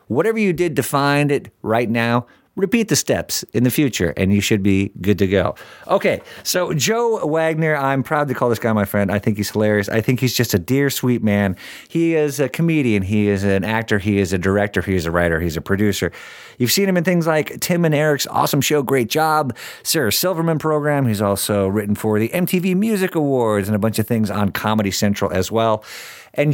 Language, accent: English, American